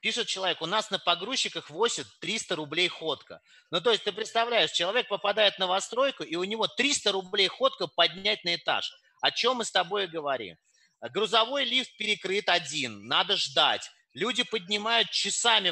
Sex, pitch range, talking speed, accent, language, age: male, 160-220 Hz, 170 wpm, native, Russian, 30-49